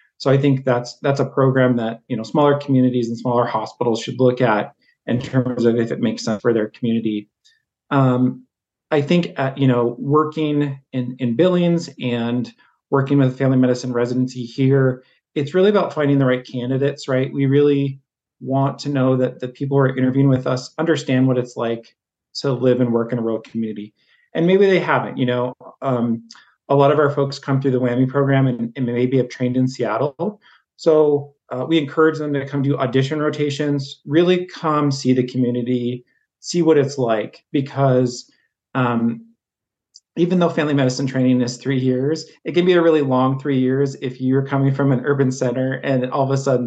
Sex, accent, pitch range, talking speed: male, American, 125-140 Hz, 195 wpm